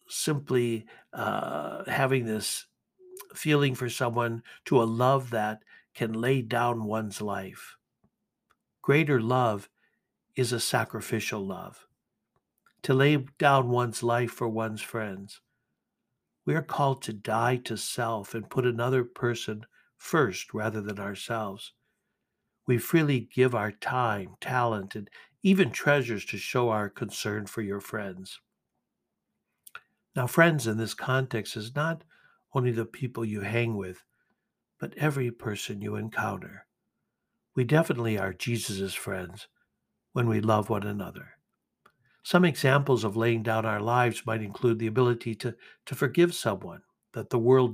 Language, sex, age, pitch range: English, male, 60-79, 110-130 Hz